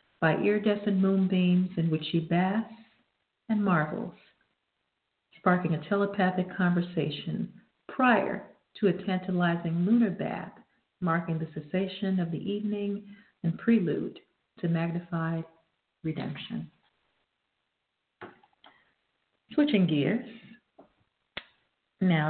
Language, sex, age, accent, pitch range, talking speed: English, female, 50-69, American, 165-200 Hz, 90 wpm